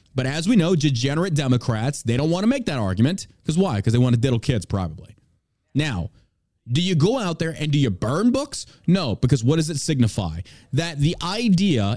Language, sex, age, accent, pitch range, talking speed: English, male, 30-49, American, 120-165 Hz, 210 wpm